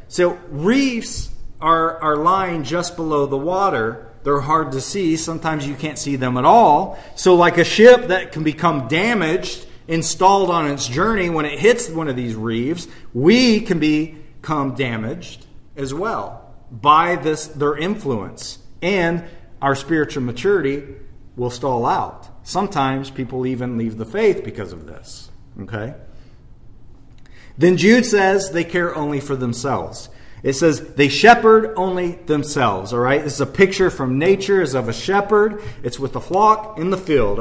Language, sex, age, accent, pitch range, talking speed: English, male, 40-59, American, 130-175 Hz, 160 wpm